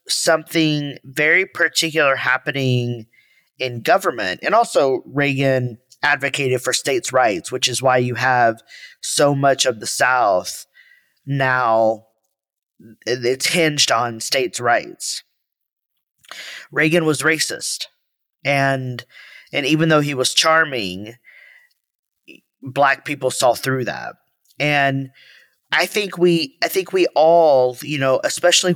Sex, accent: male, American